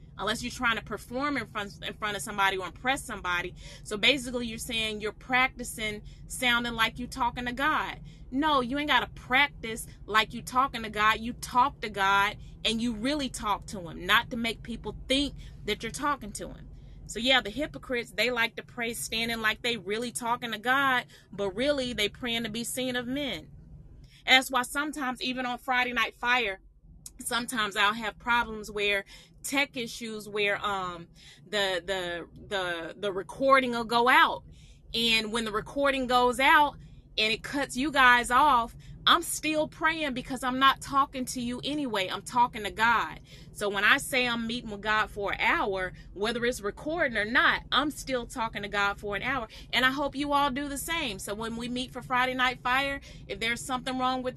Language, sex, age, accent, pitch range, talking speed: Finnish, female, 30-49, American, 210-260 Hz, 195 wpm